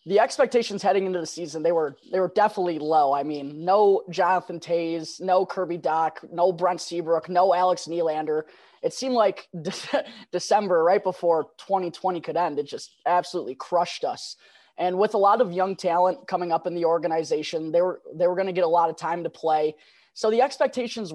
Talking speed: 195 wpm